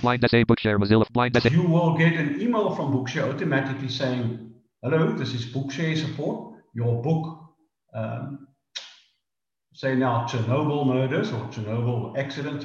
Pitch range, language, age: 120-155 Hz, English, 50-69